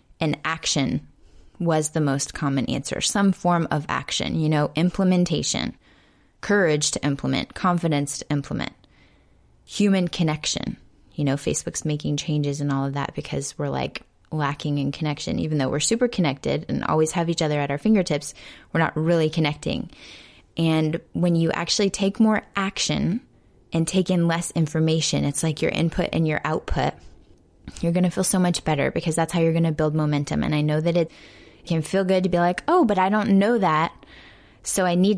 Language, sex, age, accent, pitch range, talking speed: English, female, 20-39, American, 150-180 Hz, 185 wpm